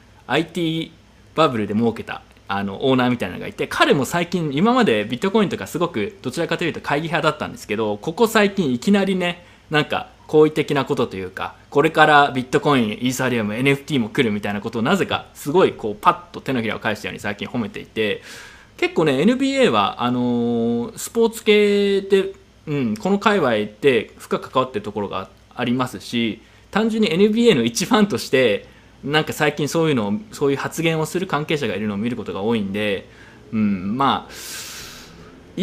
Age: 20-39